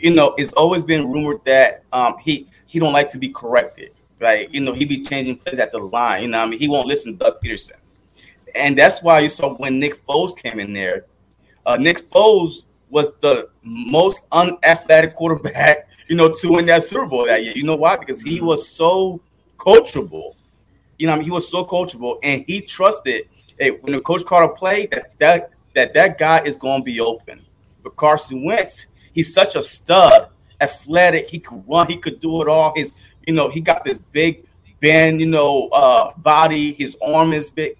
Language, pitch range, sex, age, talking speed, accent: English, 145-175 Hz, male, 30-49, 210 wpm, American